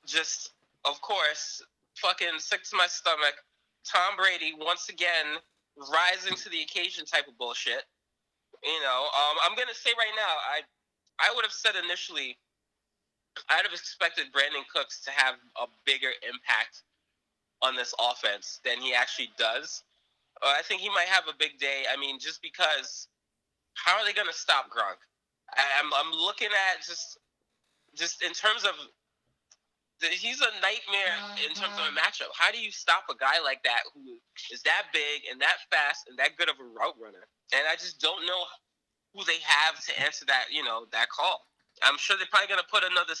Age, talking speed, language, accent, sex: 20-39, 185 wpm, English, American, male